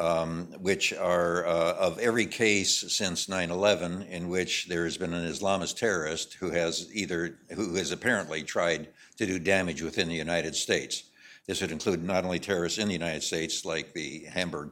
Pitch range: 75-90 Hz